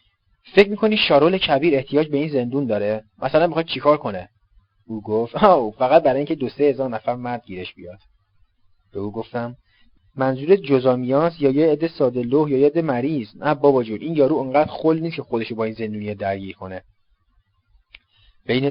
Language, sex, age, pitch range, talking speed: Persian, male, 30-49, 110-140 Hz, 180 wpm